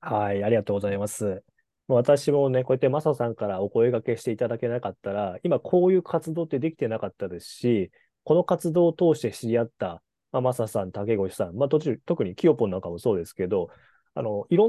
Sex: male